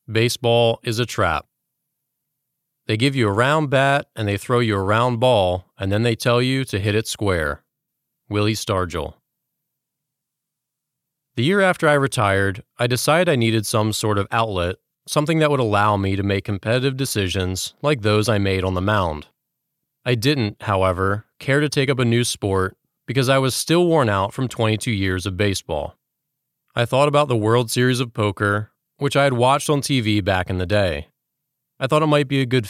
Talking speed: 190 wpm